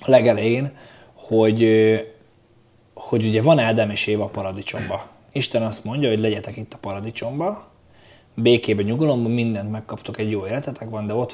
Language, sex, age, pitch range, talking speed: Hungarian, male, 20-39, 105-120 Hz, 155 wpm